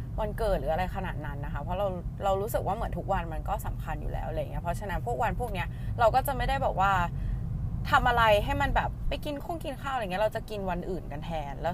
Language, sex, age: Thai, female, 20-39